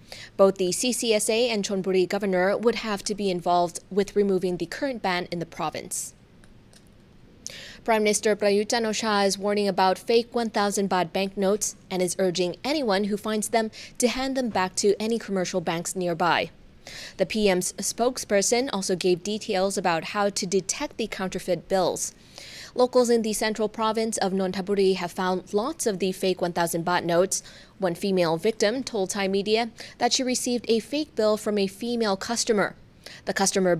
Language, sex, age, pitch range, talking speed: English, female, 20-39, 185-220 Hz, 165 wpm